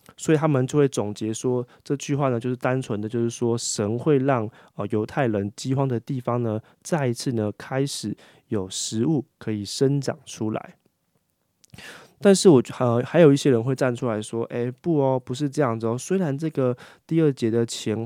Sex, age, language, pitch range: male, 20-39, Chinese, 110-140 Hz